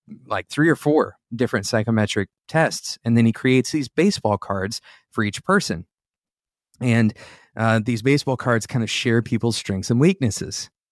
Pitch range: 110-130 Hz